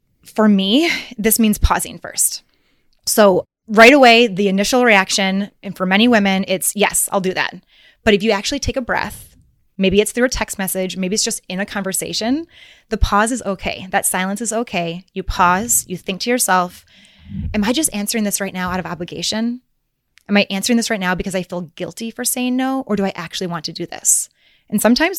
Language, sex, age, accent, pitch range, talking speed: English, female, 20-39, American, 185-230 Hz, 205 wpm